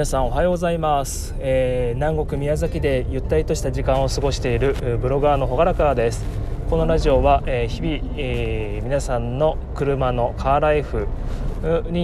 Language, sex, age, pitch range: Japanese, male, 20-39, 120-155 Hz